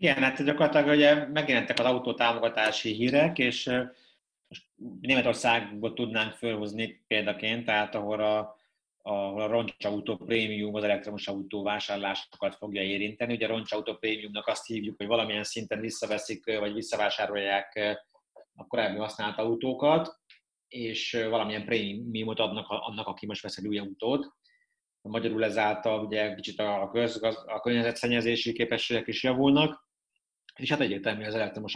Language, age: Hungarian, 30-49